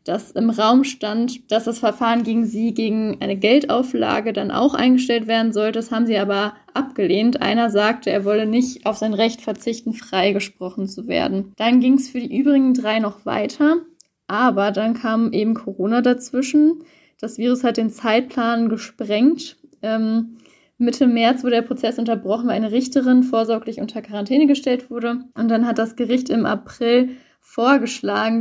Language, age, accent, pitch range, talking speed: German, 10-29, German, 215-245 Hz, 165 wpm